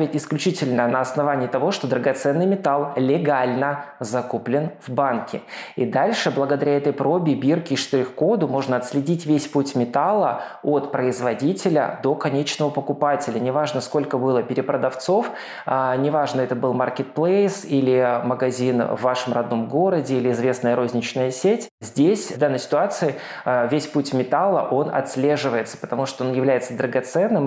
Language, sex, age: Russian, male, 20-39